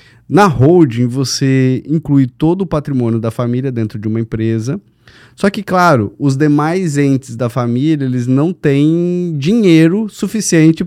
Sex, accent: male, Brazilian